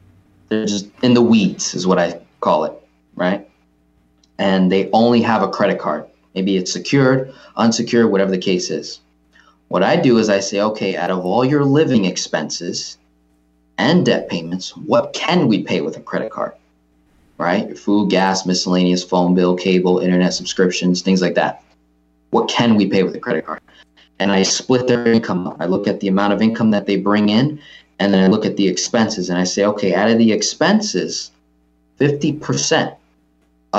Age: 20-39